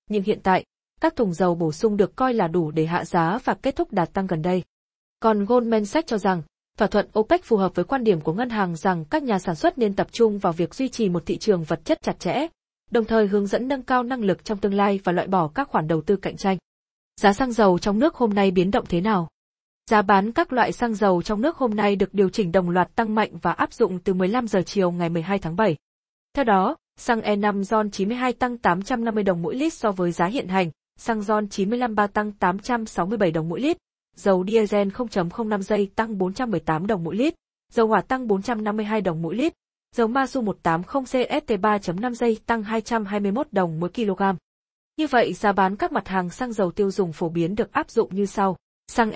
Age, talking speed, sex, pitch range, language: 20-39, 225 wpm, female, 190-235 Hz, Vietnamese